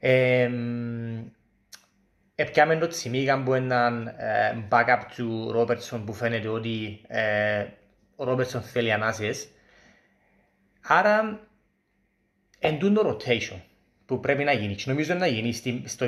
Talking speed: 115 wpm